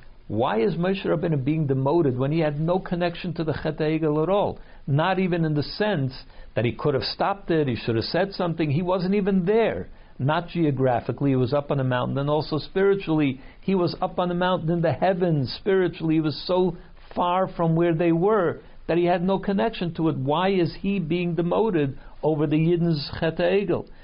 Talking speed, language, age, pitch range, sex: 205 wpm, English, 60-79, 140-180 Hz, male